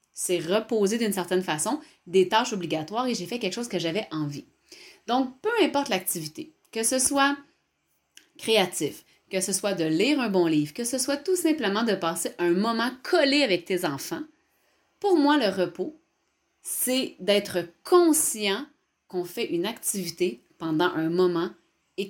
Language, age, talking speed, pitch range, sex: French, 30-49, 165 wpm, 165-255 Hz, female